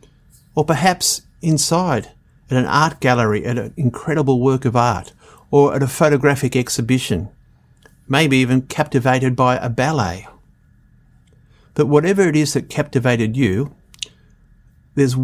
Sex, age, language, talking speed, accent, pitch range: male, 50-69, English, 125 wpm, Australian, 120-150 Hz